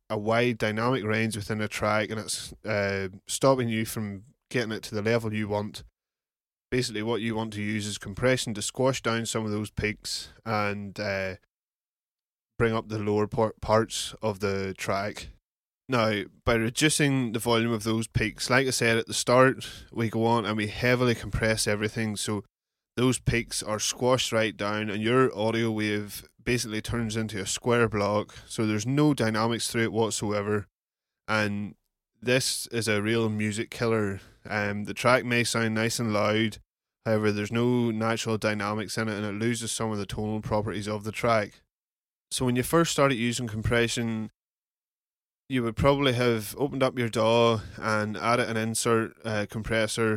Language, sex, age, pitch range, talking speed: English, male, 10-29, 105-120 Hz, 175 wpm